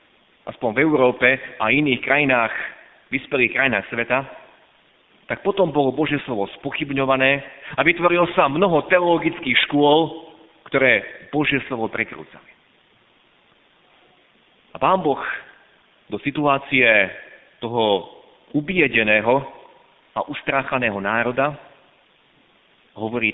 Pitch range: 110-145 Hz